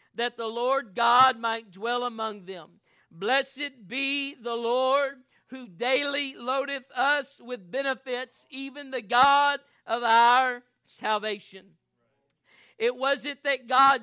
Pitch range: 235-280 Hz